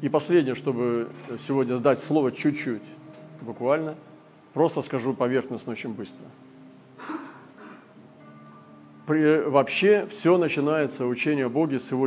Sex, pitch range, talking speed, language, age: male, 115-150 Hz, 105 wpm, Russian, 40-59